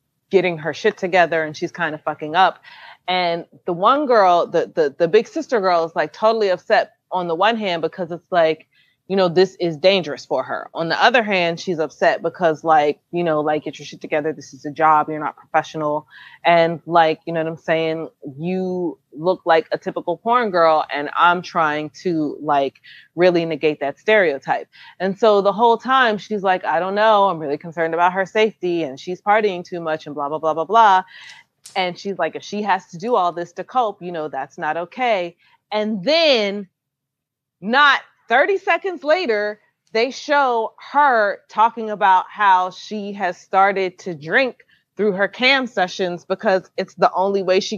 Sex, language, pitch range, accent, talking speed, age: female, English, 160-210 Hz, American, 195 wpm, 30-49